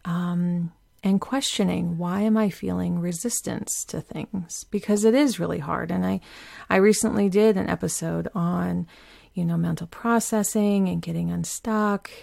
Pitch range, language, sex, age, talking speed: 175-220 Hz, English, female, 30-49, 145 wpm